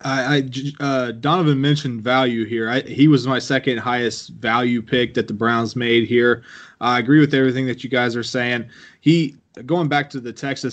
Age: 20-39